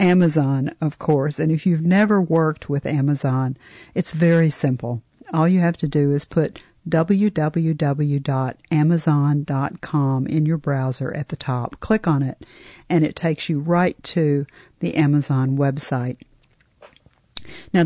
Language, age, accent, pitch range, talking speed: English, 50-69, American, 140-170 Hz, 135 wpm